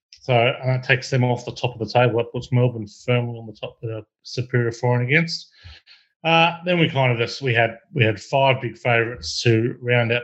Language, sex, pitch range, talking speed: English, male, 110-125 Hz, 235 wpm